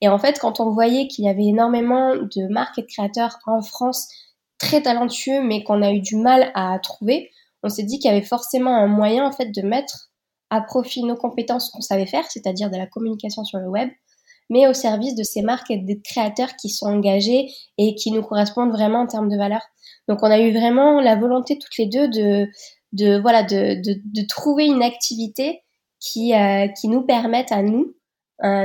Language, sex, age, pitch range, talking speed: French, female, 20-39, 210-250 Hz, 215 wpm